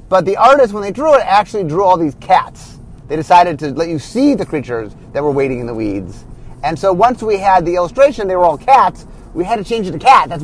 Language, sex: English, male